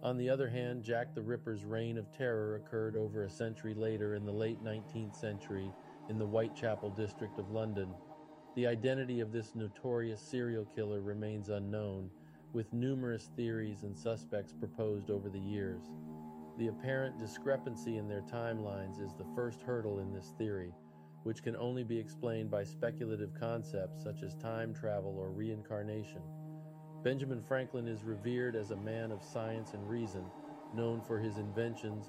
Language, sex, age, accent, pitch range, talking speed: English, male, 40-59, American, 105-120 Hz, 160 wpm